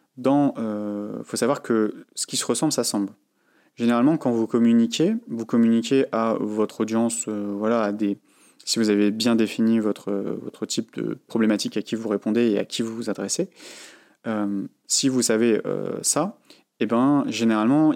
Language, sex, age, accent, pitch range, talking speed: French, male, 30-49, French, 105-120 Hz, 175 wpm